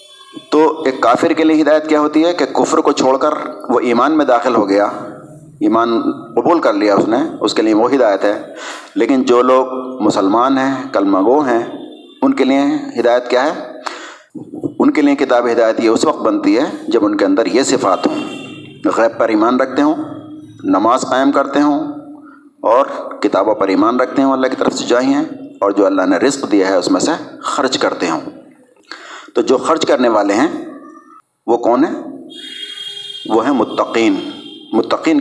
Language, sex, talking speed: Urdu, male, 185 wpm